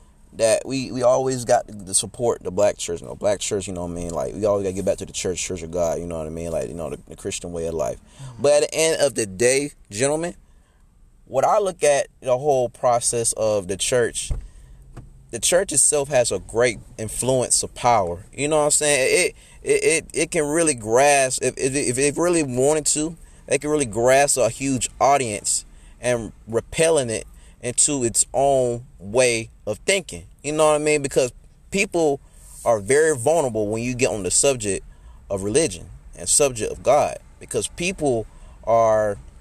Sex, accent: male, American